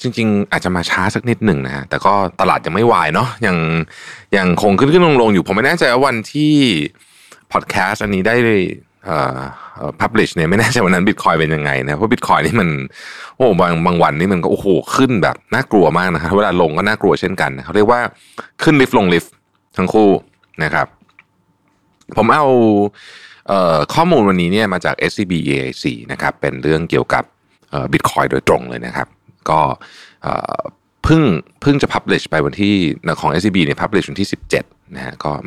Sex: male